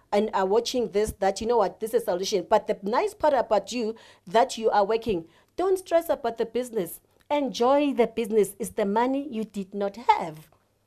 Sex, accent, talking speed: female, South African, 205 wpm